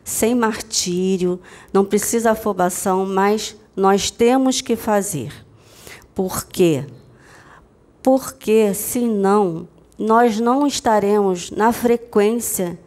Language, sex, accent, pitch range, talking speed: Portuguese, female, Brazilian, 195-255 Hz, 90 wpm